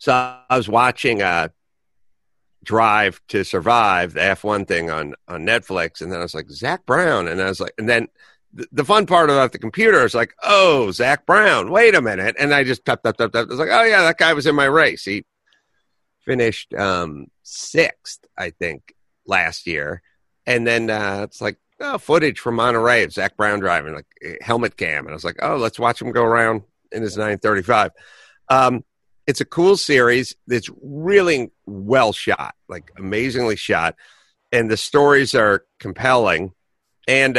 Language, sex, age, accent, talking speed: English, male, 50-69, American, 190 wpm